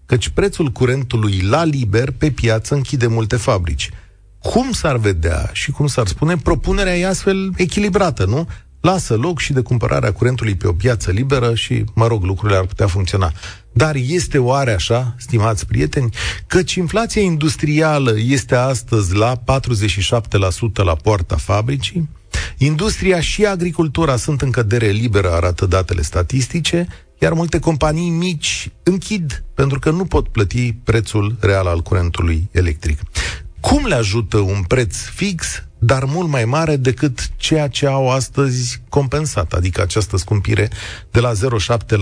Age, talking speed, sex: 40-59, 145 wpm, male